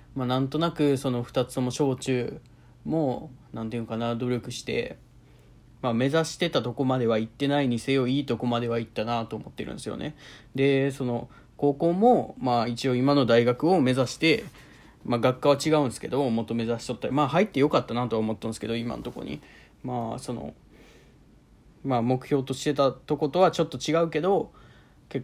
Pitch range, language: 120-140 Hz, Japanese